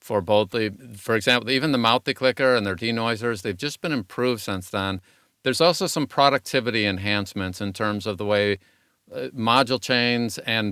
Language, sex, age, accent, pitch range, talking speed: English, male, 50-69, American, 100-130 Hz, 175 wpm